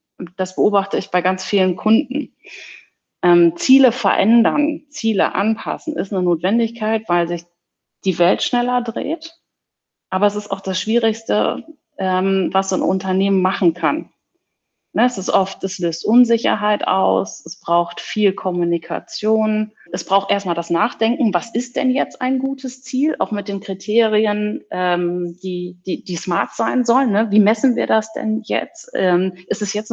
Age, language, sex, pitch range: 30-49, German, female, 190-230 Hz